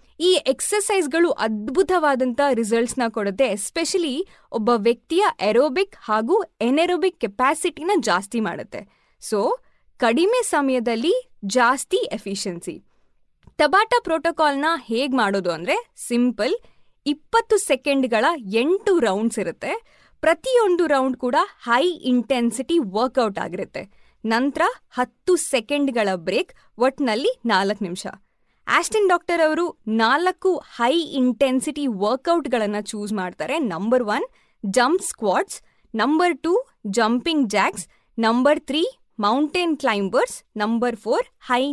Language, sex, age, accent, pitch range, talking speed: Kannada, female, 20-39, native, 225-340 Hz, 100 wpm